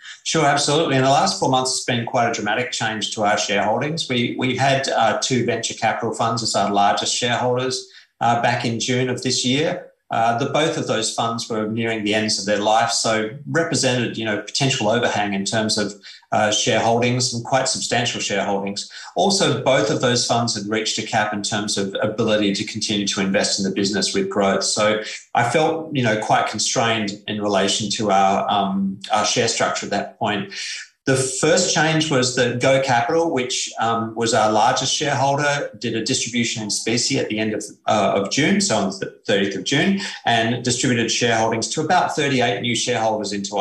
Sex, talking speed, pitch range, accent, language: male, 195 wpm, 105-130 Hz, Australian, English